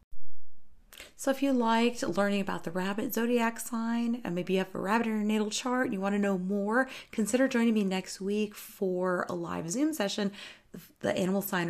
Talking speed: 200 wpm